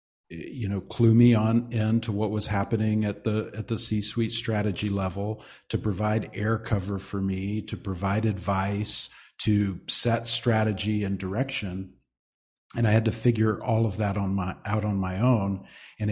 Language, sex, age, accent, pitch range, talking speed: English, male, 50-69, American, 95-115 Hz, 170 wpm